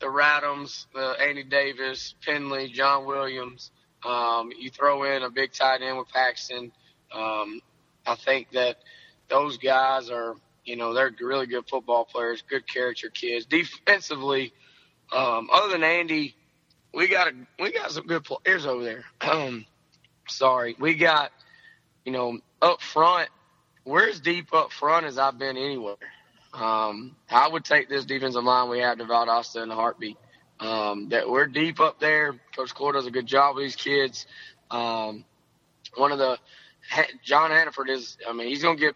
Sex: male